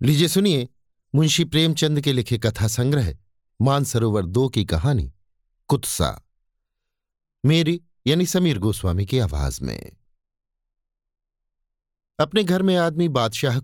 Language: Hindi